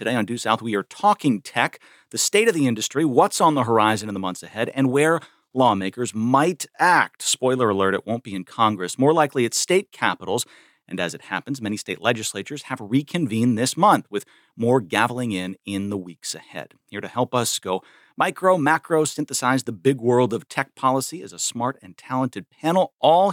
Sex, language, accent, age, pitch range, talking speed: male, English, American, 40-59, 105-145 Hz, 200 wpm